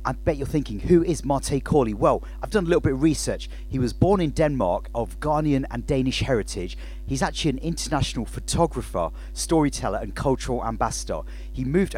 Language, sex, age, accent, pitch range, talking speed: English, male, 40-59, British, 110-145 Hz, 185 wpm